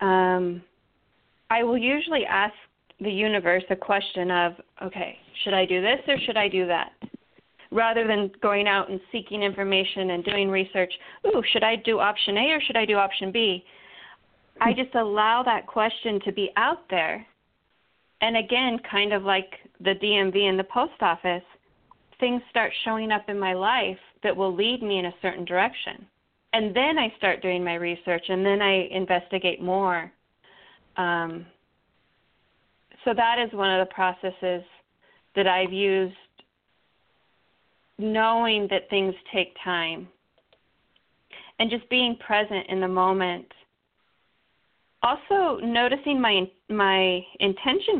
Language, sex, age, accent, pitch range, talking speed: English, female, 30-49, American, 185-225 Hz, 145 wpm